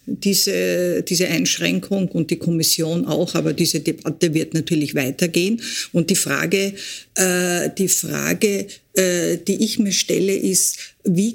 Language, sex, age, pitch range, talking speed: German, female, 50-69, 165-200 Hz, 135 wpm